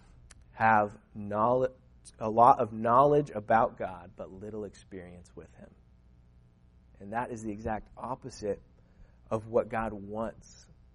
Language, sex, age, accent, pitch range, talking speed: English, male, 30-49, American, 105-135 Hz, 120 wpm